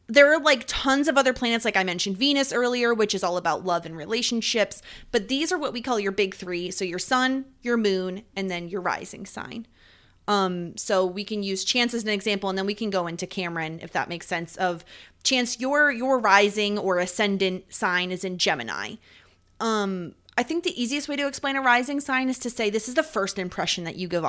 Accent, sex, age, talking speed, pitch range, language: American, female, 20-39, 225 wpm, 190-255 Hz, English